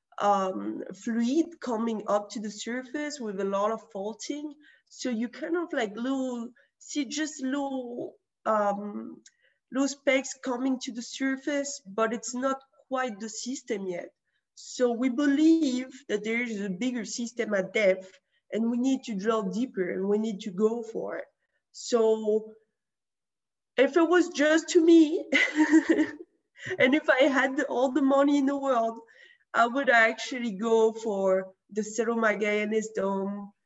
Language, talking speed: English, 150 wpm